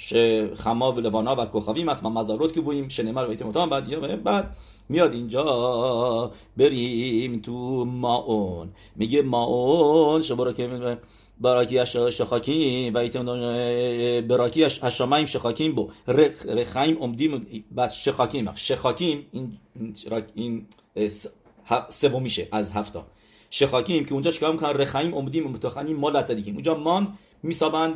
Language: English